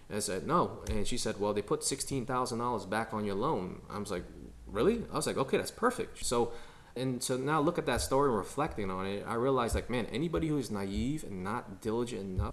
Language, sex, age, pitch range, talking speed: English, male, 20-39, 100-130 Hz, 240 wpm